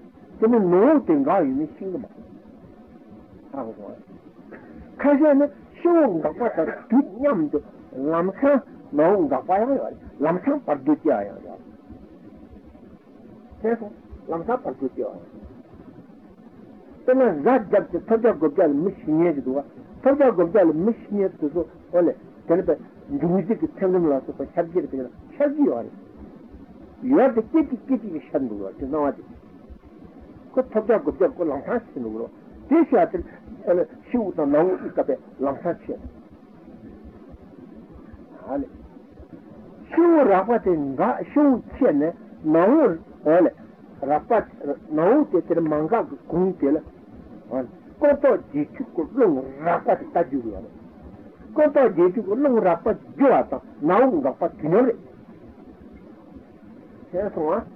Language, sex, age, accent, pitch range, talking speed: Italian, male, 60-79, Indian, 175-285 Hz, 60 wpm